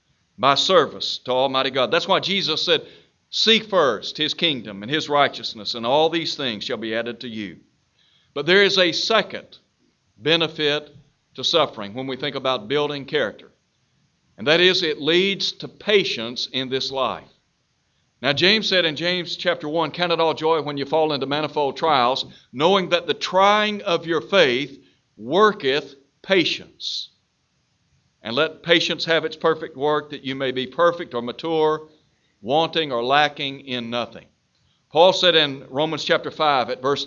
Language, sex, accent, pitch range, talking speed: English, male, American, 135-175 Hz, 165 wpm